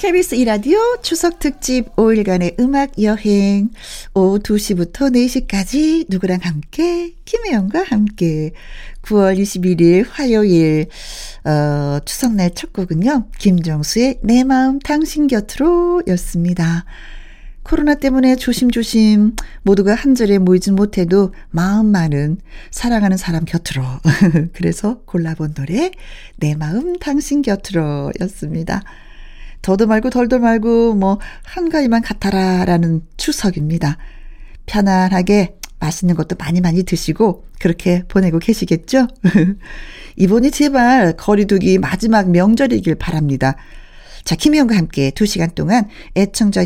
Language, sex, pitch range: Korean, female, 175-255 Hz